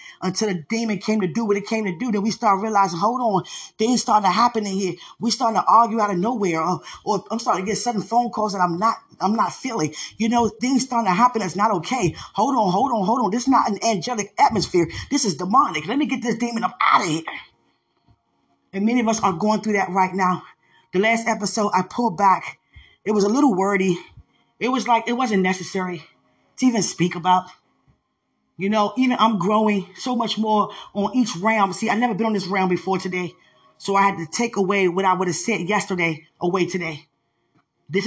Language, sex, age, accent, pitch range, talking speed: English, female, 20-39, American, 175-220 Hz, 225 wpm